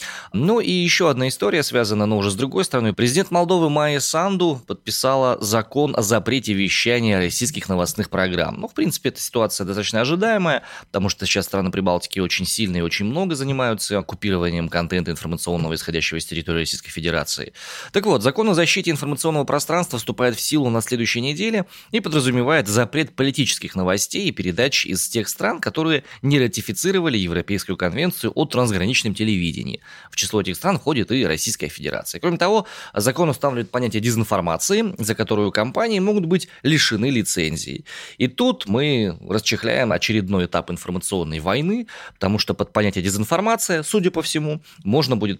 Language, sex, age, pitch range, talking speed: Russian, male, 20-39, 95-150 Hz, 155 wpm